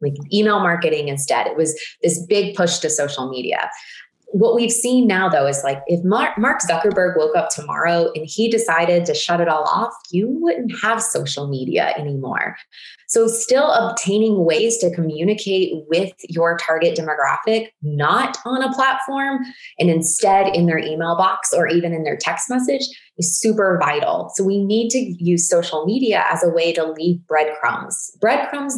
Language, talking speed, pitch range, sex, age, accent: English, 170 wpm, 160-215 Hz, female, 20-39, American